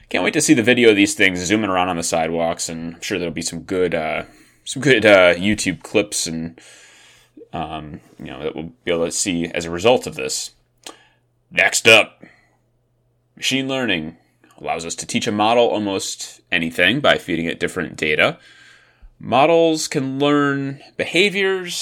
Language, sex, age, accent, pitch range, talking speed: English, male, 30-49, American, 95-140 Hz, 175 wpm